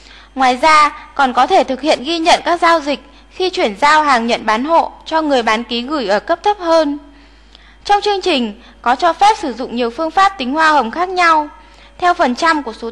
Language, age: Vietnamese, 10-29